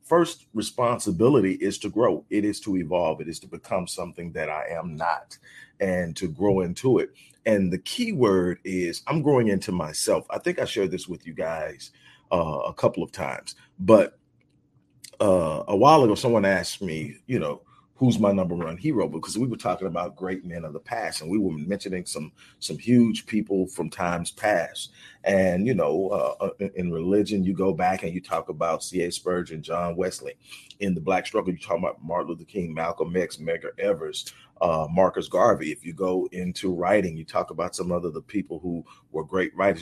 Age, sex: 40-59, male